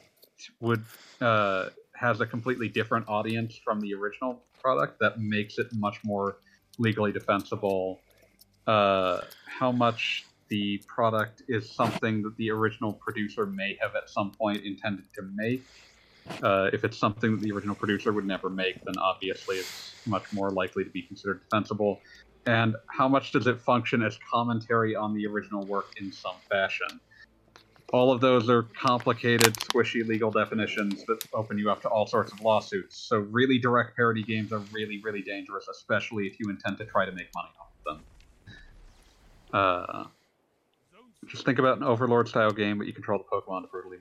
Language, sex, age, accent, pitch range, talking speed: English, male, 40-59, American, 100-120 Hz, 170 wpm